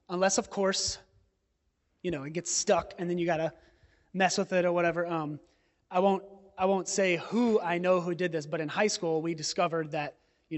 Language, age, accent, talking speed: English, 20-39, American, 215 wpm